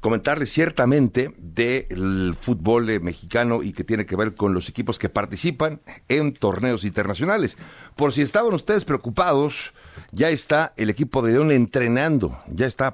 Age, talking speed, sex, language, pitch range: 60-79, 155 wpm, male, Spanish, 95-125 Hz